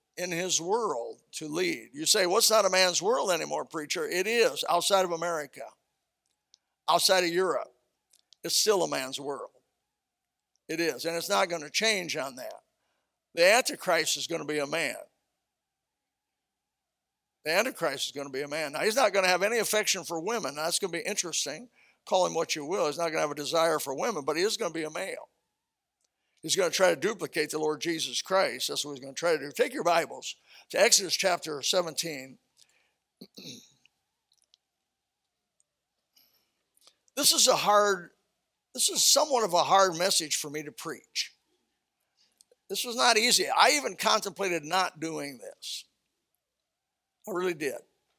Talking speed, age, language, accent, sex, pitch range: 180 wpm, 60-79, English, American, male, 155-215 Hz